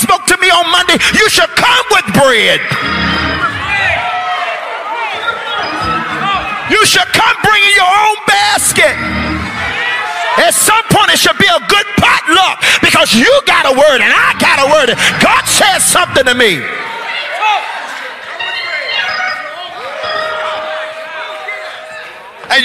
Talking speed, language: 110 wpm, English